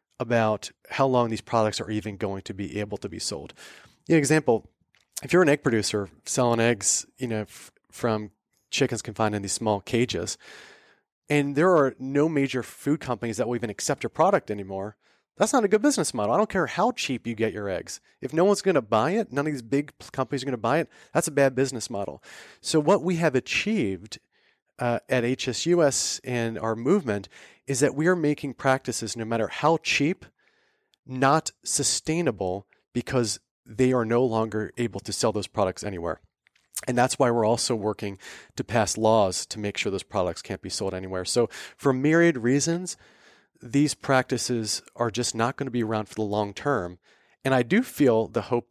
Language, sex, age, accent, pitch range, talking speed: English, male, 30-49, American, 105-145 Hz, 195 wpm